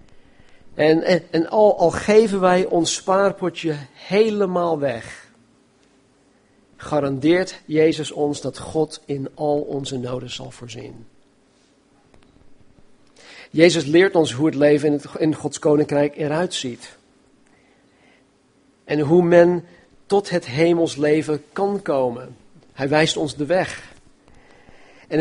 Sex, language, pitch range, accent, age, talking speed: male, Dutch, 145-175 Hz, Dutch, 50-69, 115 wpm